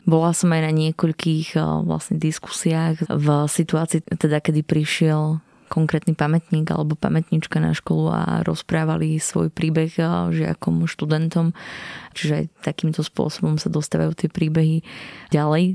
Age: 20-39